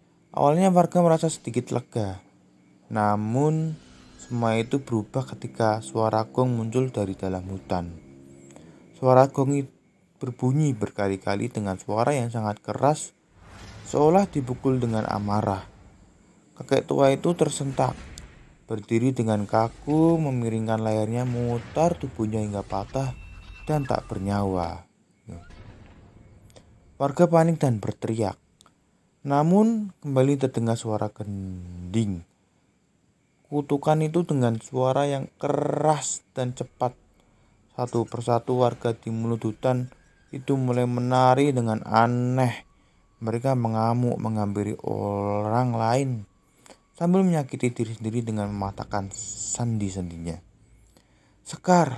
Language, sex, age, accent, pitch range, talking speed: Indonesian, male, 20-39, native, 100-135 Hz, 100 wpm